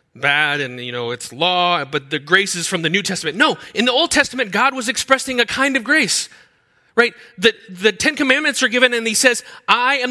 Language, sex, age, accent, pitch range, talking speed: English, male, 30-49, American, 165-240 Hz, 225 wpm